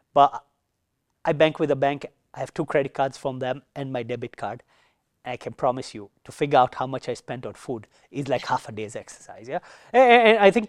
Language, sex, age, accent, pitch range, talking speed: English, male, 30-49, Indian, 130-170 Hz, 235 wpm